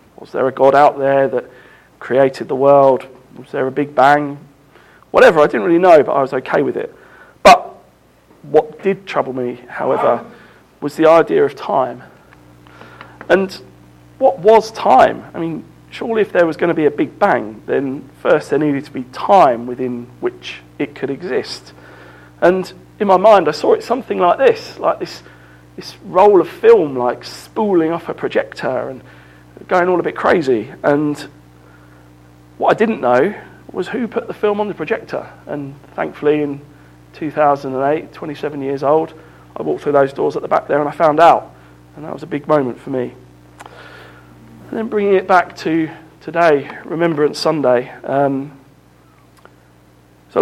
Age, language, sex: 40-59, English, male